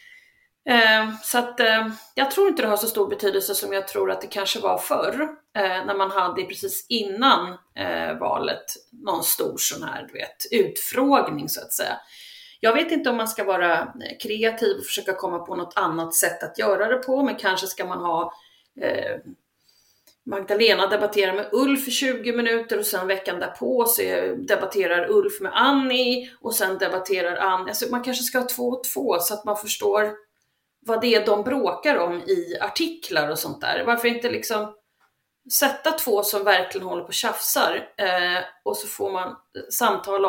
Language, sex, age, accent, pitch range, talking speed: English, female, 30-49, Swedish, 195-275 Hz, 185 wpm